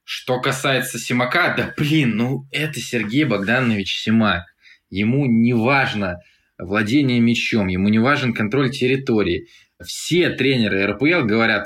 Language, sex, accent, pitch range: Russian, male, native, 95-125 Hz